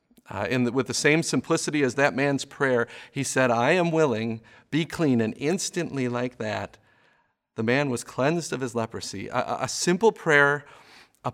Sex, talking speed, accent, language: male, 180 wpm, American, English